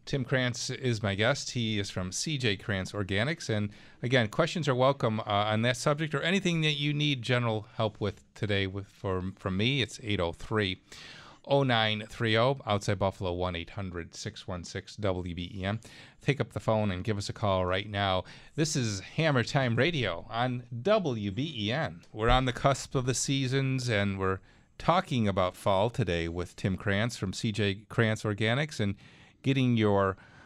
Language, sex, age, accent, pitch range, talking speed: English, male, 40-59, American, 100-130 Hz, 155 wpm